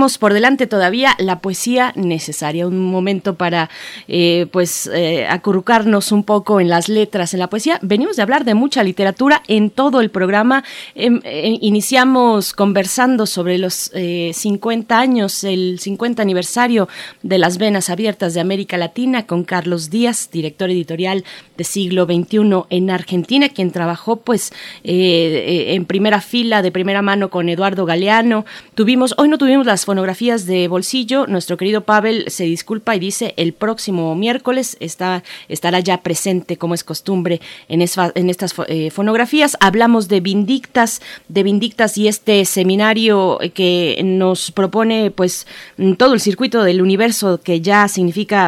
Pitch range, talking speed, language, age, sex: 180-220 Hz, 155 wpm, Spanish, 30-49, female